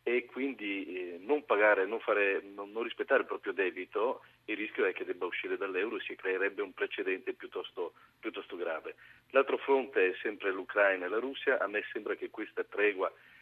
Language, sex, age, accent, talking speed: Italian, male, 40-59, native, 185 wpm